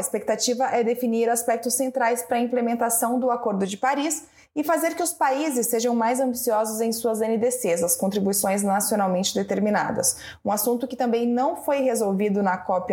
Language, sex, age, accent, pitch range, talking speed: Portuguese, female, 20-39, Brazilian, 225-265 Hz, 170 wpm